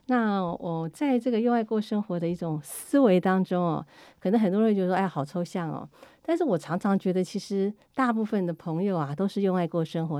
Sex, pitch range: female, 165-215 Hz